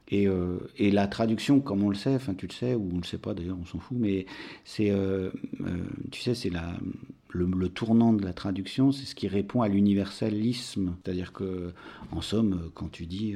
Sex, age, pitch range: male, 40-59, 90-110 Hz